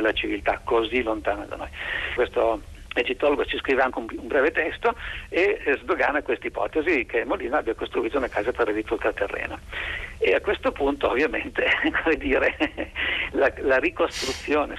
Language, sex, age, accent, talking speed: Italian, male, 50-69, native, 145 wpm